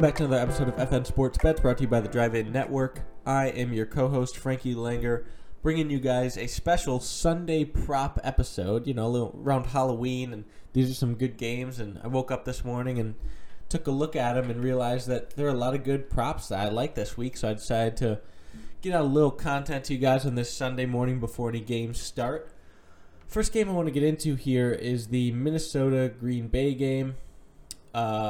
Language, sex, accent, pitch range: English, male, American, 115-135 Hz